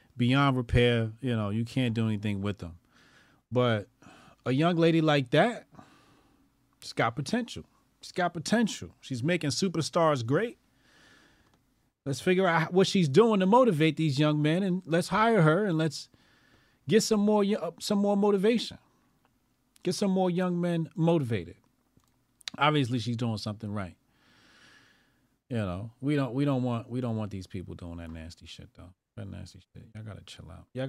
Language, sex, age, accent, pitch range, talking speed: English, male, 30-49, American, 115-150 Hz, 165 wpm